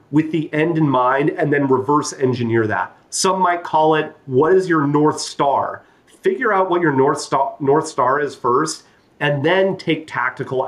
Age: 30-49